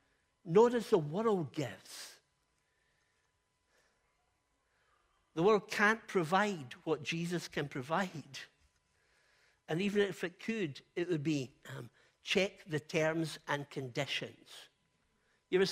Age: 60-79